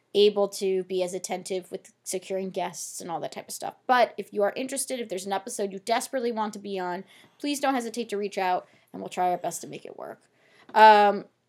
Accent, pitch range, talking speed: American, 195-250 Hz, 235 wpm